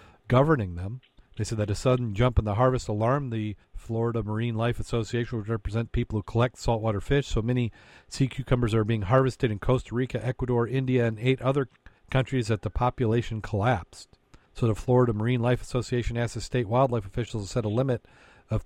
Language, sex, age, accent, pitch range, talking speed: English, male, 40-59, American, 105-125 Hz, 195 wpm